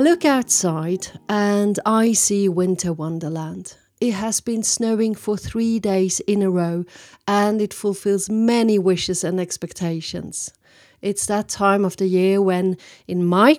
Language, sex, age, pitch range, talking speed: English, female, 40-59, 180-210 Hz, 150 wpm